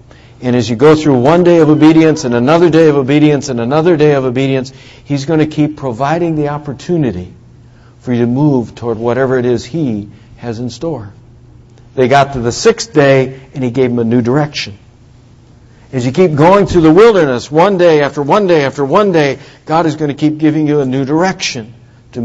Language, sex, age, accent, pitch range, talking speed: English, male, 60-79, American, 120-150 Hz, 210 wpm